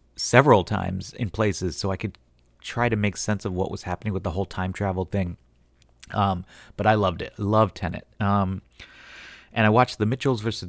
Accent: American